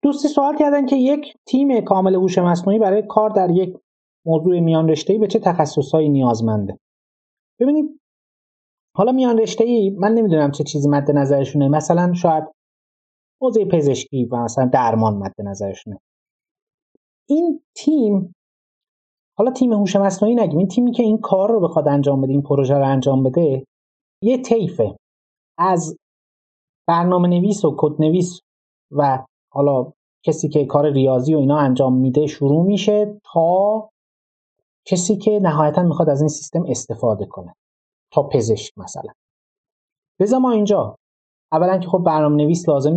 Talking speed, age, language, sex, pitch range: 140 wpm, 30-49, Persian, male, 135-195 Hz